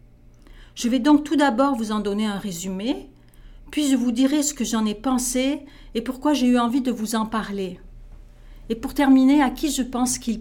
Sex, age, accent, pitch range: female, 40-59, French, 205-265 Hz